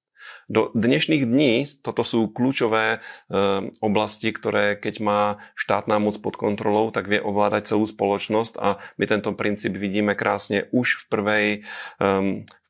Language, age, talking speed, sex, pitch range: Slovak, 30-49, 145 wpm, male, 100-110 Hz